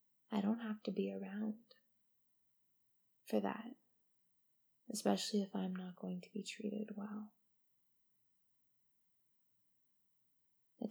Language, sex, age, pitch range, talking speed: English, female, 20-39, 185-215 Hz, 100 wpm